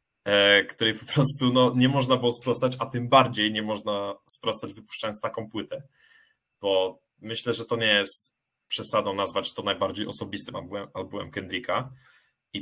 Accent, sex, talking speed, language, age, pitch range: native, male, 145 wpm, Polish, 20-39, 100-120 Hz